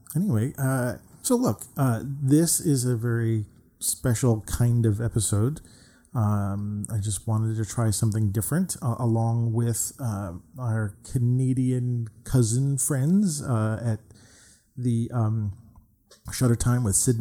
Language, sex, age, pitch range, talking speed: English, male, 40-59, 105-130 Hz, 130 wpm